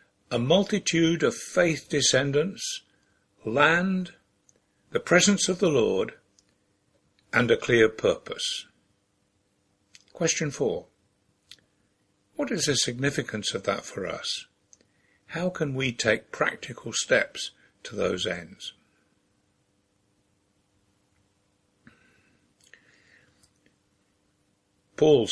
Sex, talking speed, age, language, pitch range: male, 85 wpm, 60-79, English, 100-160 Hz